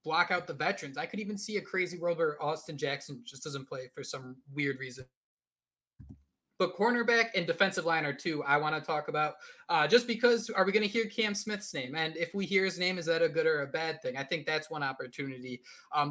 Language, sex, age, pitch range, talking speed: English, male, 20-39, 140-195 Hz, 235 wpm